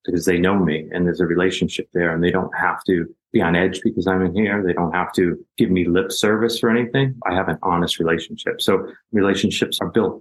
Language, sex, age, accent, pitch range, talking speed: English, male, 30-49, American, 90-100 Hz, 235 wpm